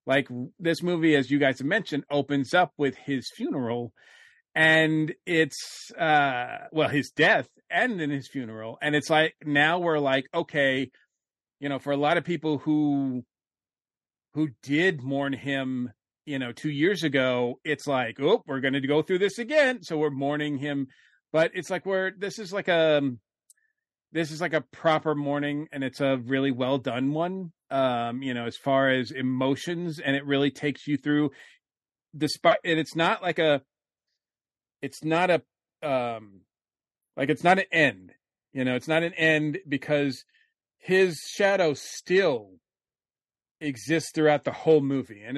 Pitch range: 135-160 Hz